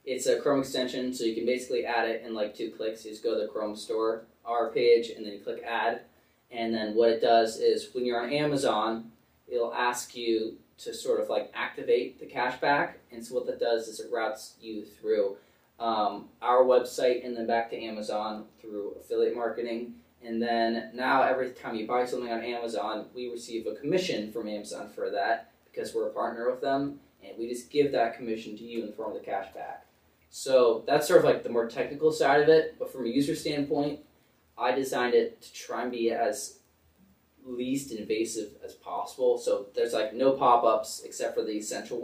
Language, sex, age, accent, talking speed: English, male, 20-39, American, 205 wpm